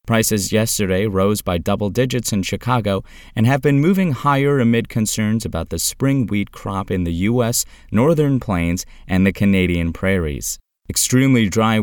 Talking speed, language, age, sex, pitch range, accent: 155 wpm, English, 30-49, male, 85-115 Hz, American